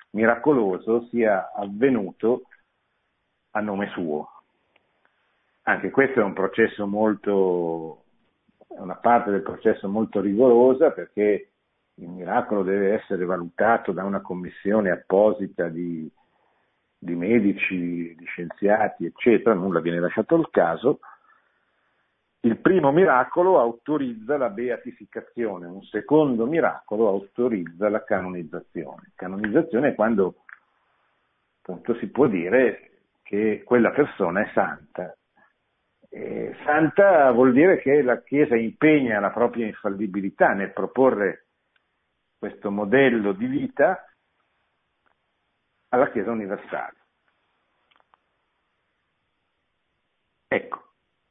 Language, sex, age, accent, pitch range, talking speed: Italian, male, 50-69, native, 95-125 Hz, 95 wpm